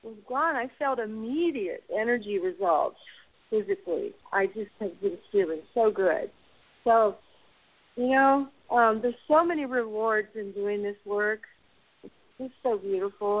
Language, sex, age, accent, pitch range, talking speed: English, female, 50-69, American, 210-290 Hz, 140 wpm